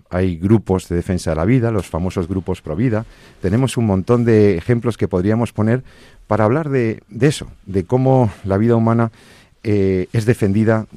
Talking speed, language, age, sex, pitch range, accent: 175 wpm, Spanish, 50-69, male, 85-110 Hz, Spanish